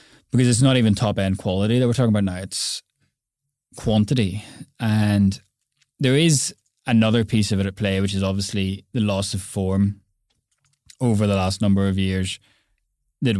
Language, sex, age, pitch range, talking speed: English, male, 20-39, 100-115 Hz, 160 wpm